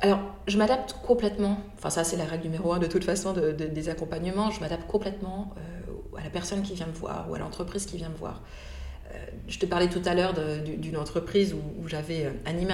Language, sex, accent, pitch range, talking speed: French, female, French, 165-205 Hz, 235 wpm